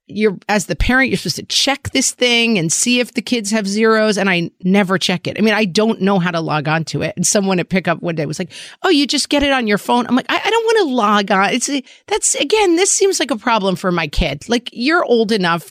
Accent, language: American, English